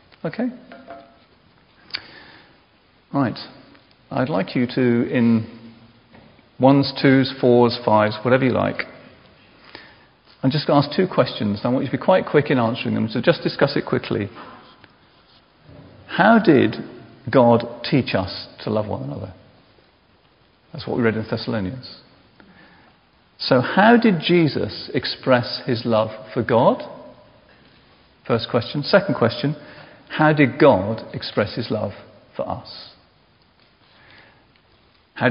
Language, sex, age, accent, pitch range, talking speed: English, male, 40-59, British, 115-155 Hz, 120 wpm